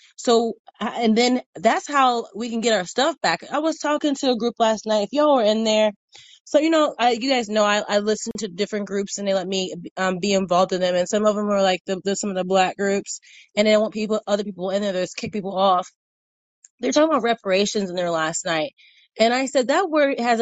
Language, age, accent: English, 20-39, American